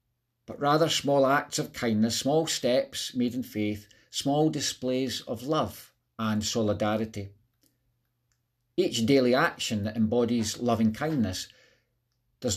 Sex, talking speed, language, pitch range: male, 120 wpm, English, 110-125 Hz